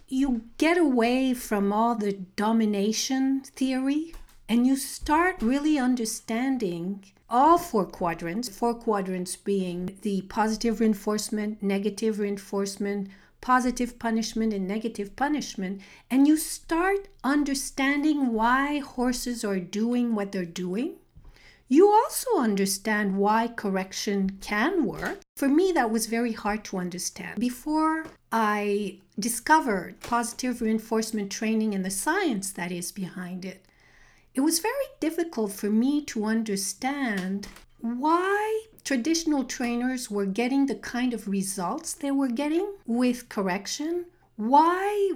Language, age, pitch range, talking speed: English, 50-69, 205-275 Hz, 120 wpm